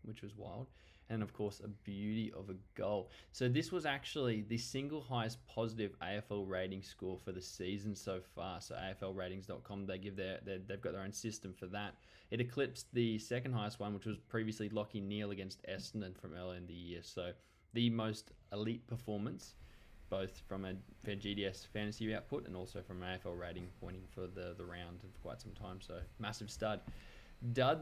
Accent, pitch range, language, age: Australian, 95-120 Hz, English, 20-39